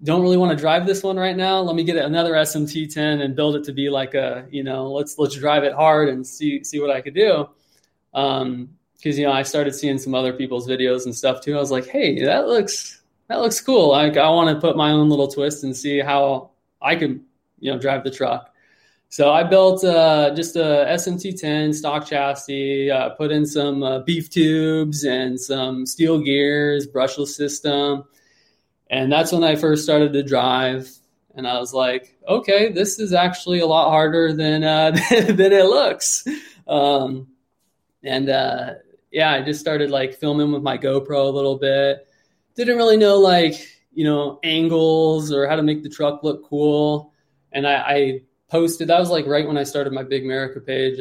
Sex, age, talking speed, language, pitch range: male, 20-39, 200 wpm, English, 135-160 Hz